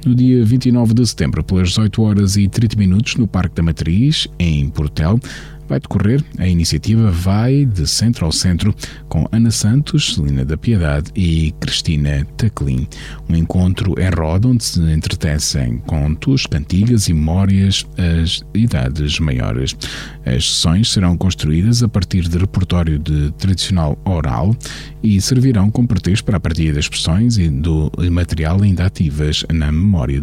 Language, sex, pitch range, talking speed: Portuguese, male, 80-110 Hz, 150 wpm